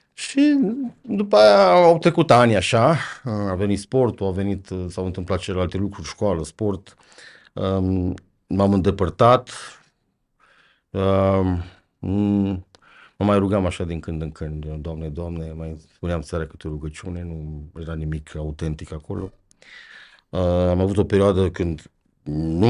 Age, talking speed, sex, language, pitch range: 50-69, 125 wpm, male, Romanian, 85-115 Hz